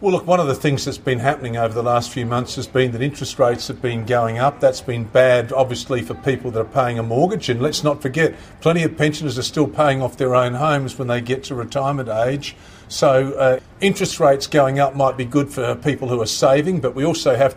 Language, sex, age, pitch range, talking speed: English, male, 50-69, 125-150 Hz, 245 wpm